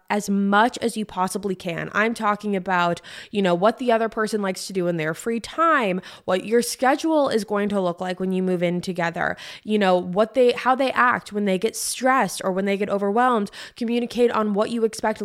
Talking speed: 220 wpm